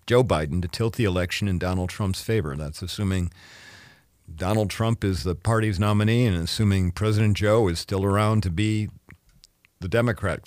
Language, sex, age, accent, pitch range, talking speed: English, male, 50-69, American, 95-130 Hz, 165 wpm